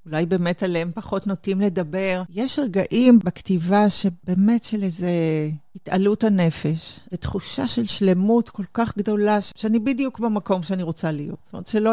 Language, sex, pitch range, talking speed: Hebrew, female, 175-220 Hz, 145 wpm